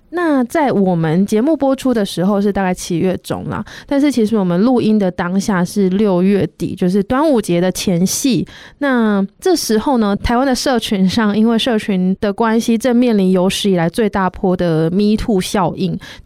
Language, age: Chinese, 20-39